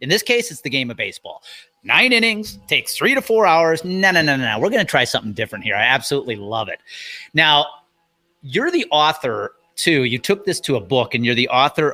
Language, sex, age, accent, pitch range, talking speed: English, male, 30-49, American, 125-185 Hz, 230 wpm